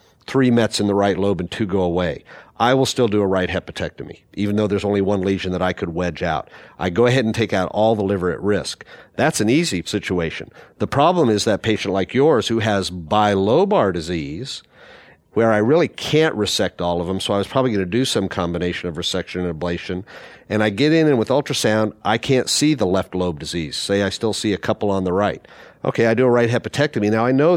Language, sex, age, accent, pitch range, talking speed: English, male, 50-69, American, 95-115 Hz, 235 wpm